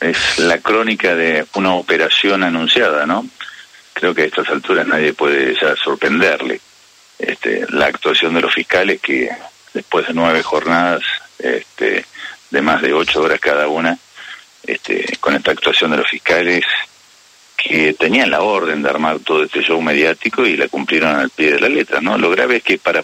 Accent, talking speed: Argentinian, 175 wpm